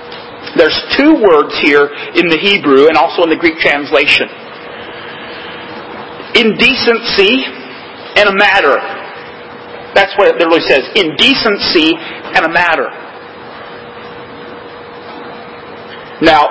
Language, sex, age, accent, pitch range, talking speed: English, male, 40-59, American, 215-300 Hz, 100 wpm